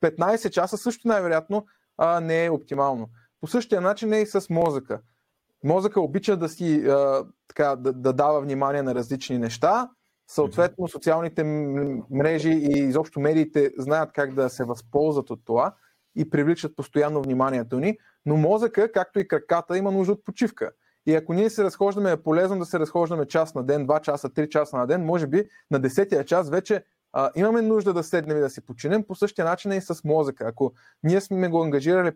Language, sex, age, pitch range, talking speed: Bulgarian, male, 20-39, 145-195 Hz, 185 wpm